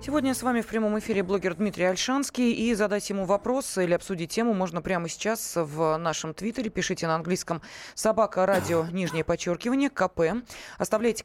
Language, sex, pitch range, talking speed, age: Russian, female, 170-220 Hz, 165 wpm, 20-39